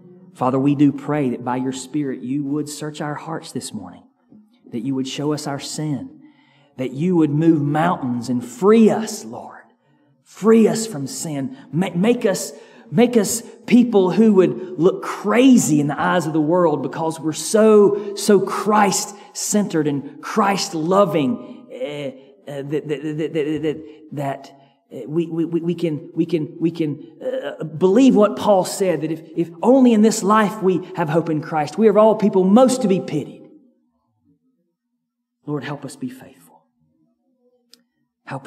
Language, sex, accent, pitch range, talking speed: English, male, American, 145-215 Hz, 160 wpm